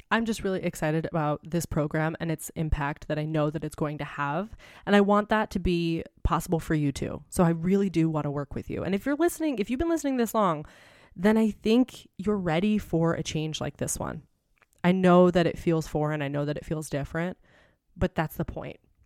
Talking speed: 235 wpm